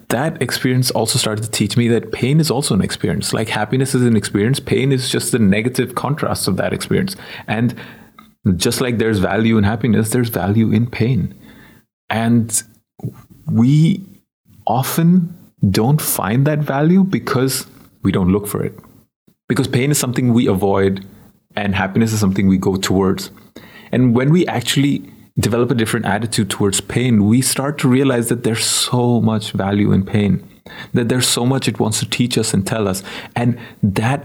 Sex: male